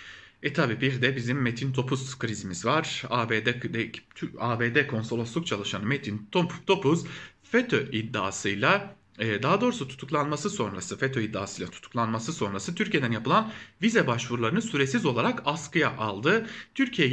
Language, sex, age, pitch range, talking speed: German, male, 40-59, 115-165 Hz, 120 wpm